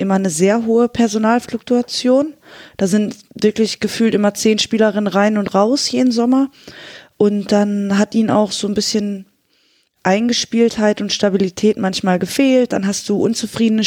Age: 20-39